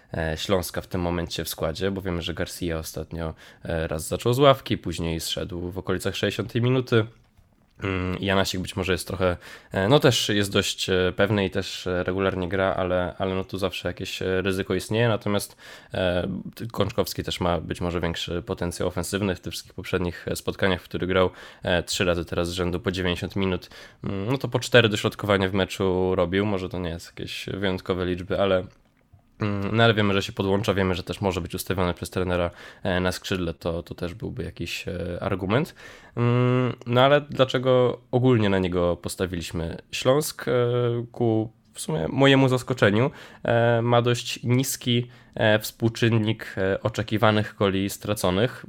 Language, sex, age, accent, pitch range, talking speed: Polish, male, 20-39, native, 90-115 Hz, 155 wpm